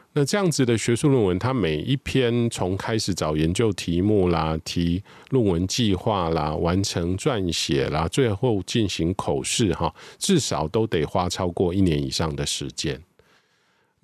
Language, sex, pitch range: Chinese, male, 85-120 Hz